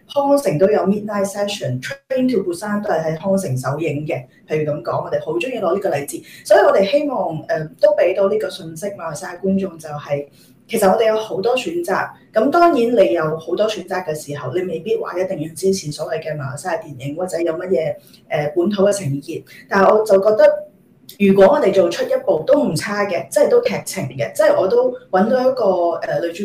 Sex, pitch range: female, 165-220 Hz